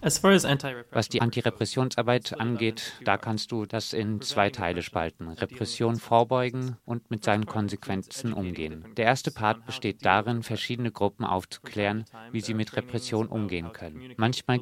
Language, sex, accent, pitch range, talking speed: German, male, German, 100-120 Hz, 140 wpm